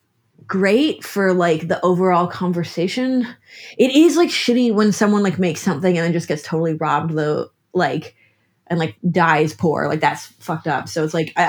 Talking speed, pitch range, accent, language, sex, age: 185 wpm, 160-200 Hz, American, English, female, 20-39